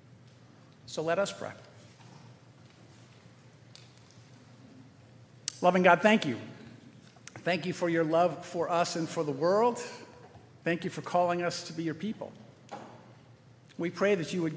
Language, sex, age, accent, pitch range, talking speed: English, male, 50-69, American, 130-180 Hz, 135 wpm